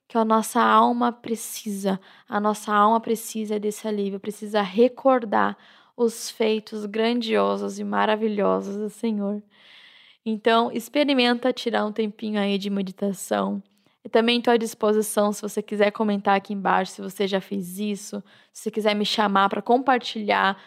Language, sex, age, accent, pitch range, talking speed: Portuguese, female, 10-29, Brazilian, 215-260 Hz, 150 wpm